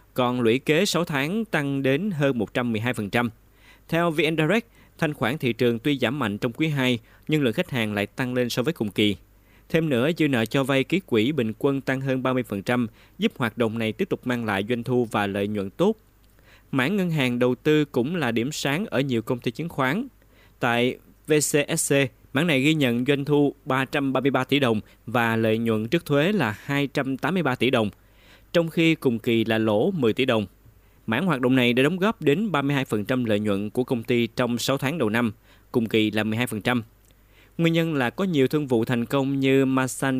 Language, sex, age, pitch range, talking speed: Vietnamese, male, 20-39, 110-140 Hz, 205 wpm